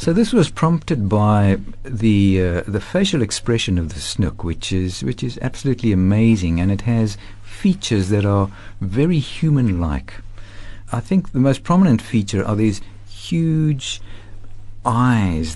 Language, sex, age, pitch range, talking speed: English, male, 60-79, 95-120 Hz, 145 wpm